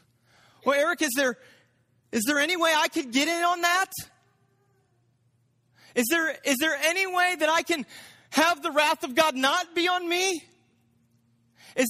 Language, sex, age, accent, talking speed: English, male, 30-49, American, 165 wpm